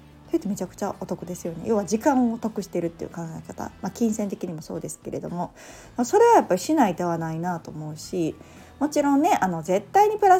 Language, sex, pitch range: Japanese, female, 175-265 Hz